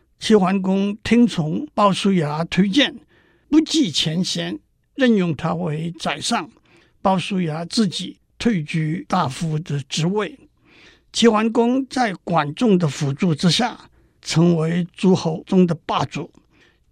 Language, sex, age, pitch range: Chinese, male, 60-79, 170-235 Hz